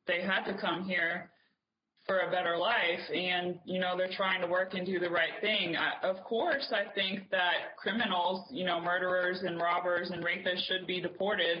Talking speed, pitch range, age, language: 190 wpm, 175-205 Hz, 20-39, English